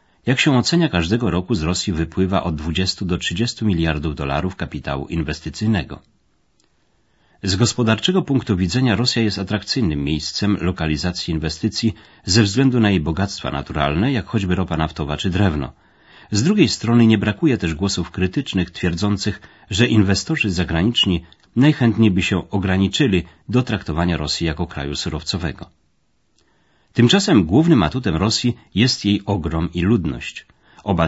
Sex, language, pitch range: male, Polish, 80-110 Hz